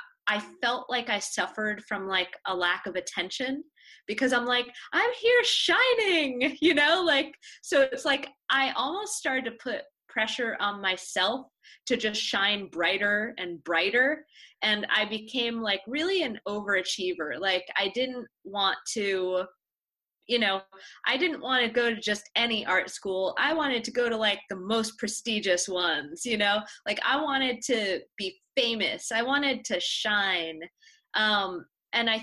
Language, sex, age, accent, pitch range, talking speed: English, female, 20-39, American, 190-260 Hz, 160 wpm